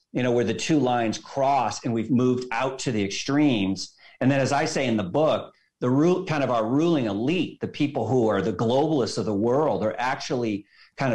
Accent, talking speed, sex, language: American, 220 wpm, male, English